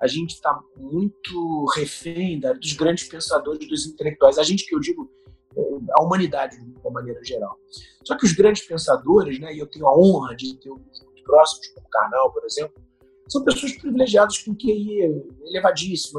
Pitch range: 150-210 Hz